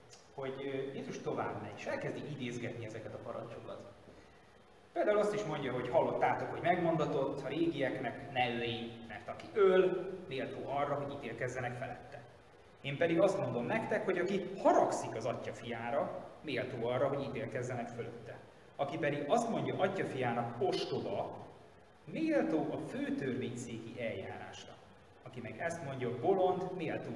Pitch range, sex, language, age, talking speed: 115-165 Hz, male, Hungarian, 30-49, 135 wpm